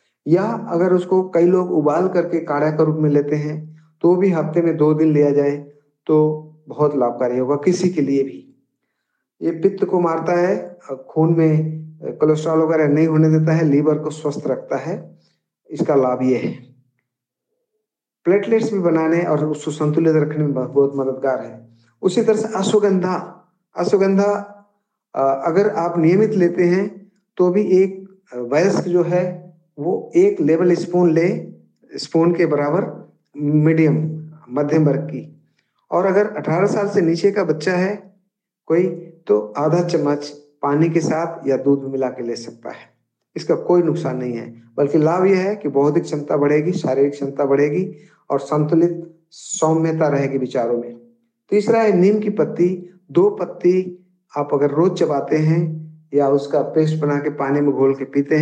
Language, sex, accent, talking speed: Hindi, male, native, 160 wpm